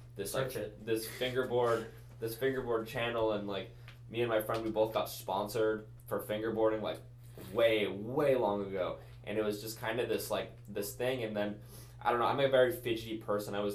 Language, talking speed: English, 200 wpm